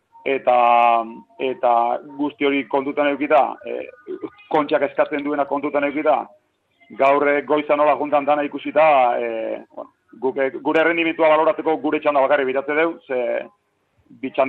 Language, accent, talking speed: Spanish, Spanish, 120 wpm